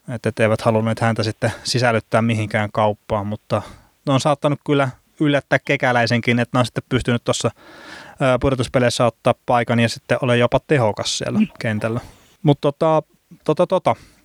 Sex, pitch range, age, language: male, 110-140 Hz, 20-39, Finnish